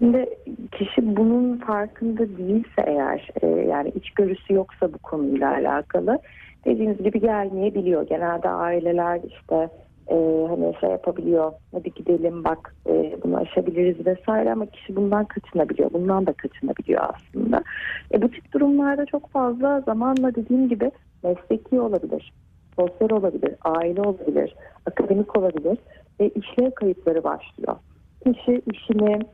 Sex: female